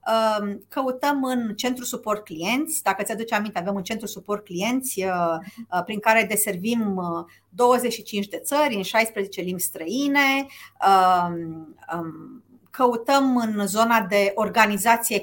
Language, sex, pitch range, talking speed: Romanian, female, 190-250 Hz, 110 wpm